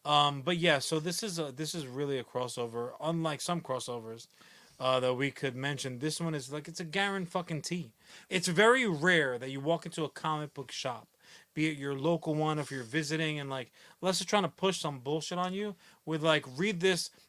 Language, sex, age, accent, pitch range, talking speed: English, male, 30-49, American, 140-180 Hz, 220 wpm